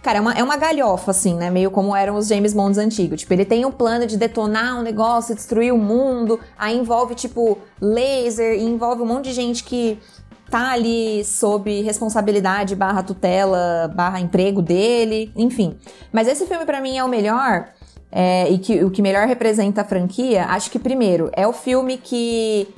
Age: 20-39